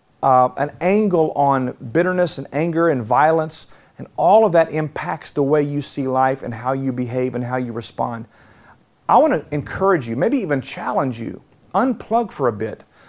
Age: 40-59